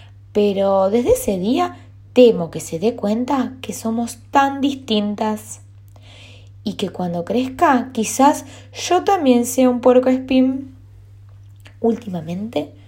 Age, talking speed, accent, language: 20-39, 115 wpm, Argentinian, Spanish